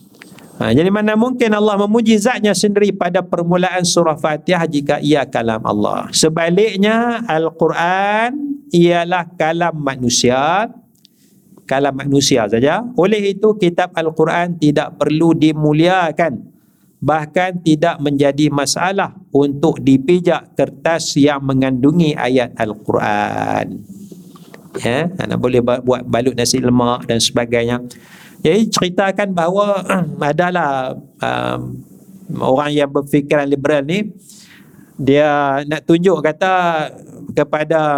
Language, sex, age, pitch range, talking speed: Malay, male, 50-69, 140-180 Hz, 105 wpm